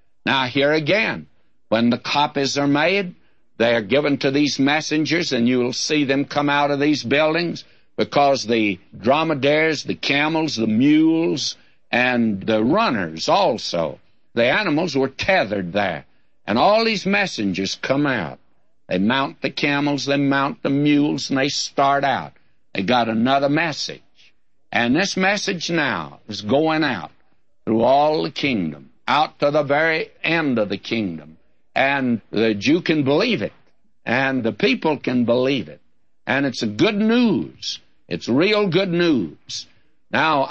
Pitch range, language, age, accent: 120-155 Hz, English, 60-79, American